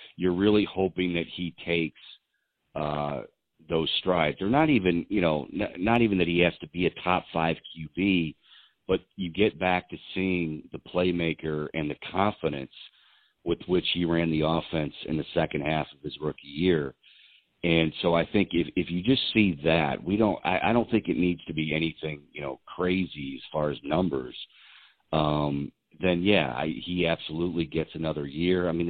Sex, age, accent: male, 50-69, American